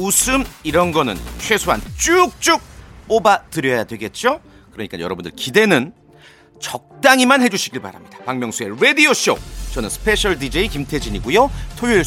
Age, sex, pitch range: 40-59, male, 125-205 Hz